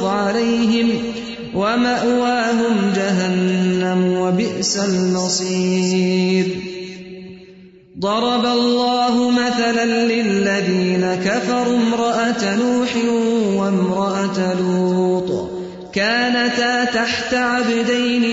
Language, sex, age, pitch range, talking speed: English, male, 30-49, 195-240 Hz, 55 wpm